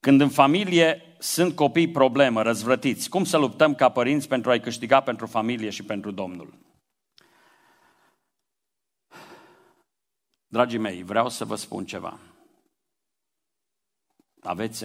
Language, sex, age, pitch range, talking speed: Romanian, male, 50-69, 95-120 Hz, 115 wpm